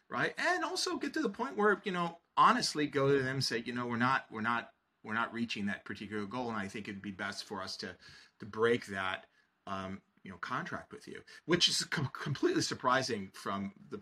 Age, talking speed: 30-49, 230 wpm